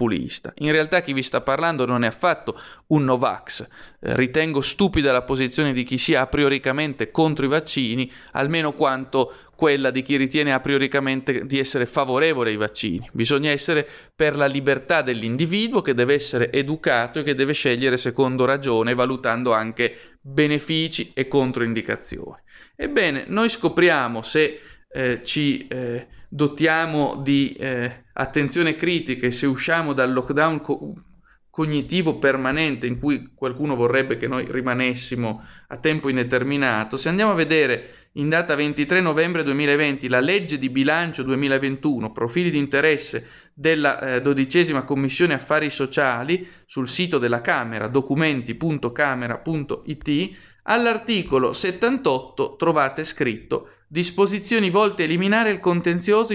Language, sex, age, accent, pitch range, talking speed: Italian, male, 30-49, native, 130-160 Hz, 130 wpm